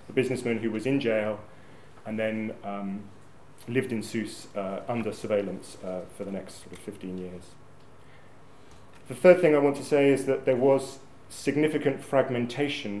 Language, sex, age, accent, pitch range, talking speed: English, male, 30-49, British, 105-130 Hz, 155 wpm